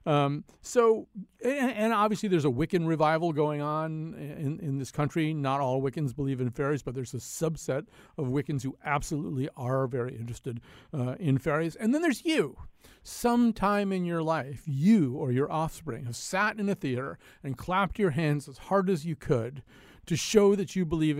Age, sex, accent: 50-69, male, American